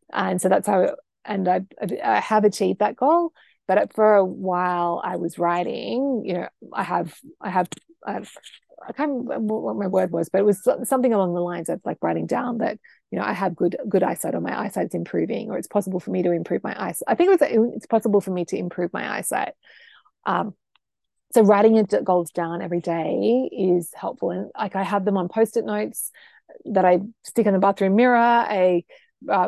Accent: Australian